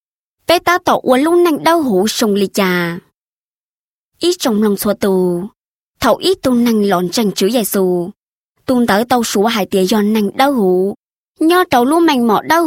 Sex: male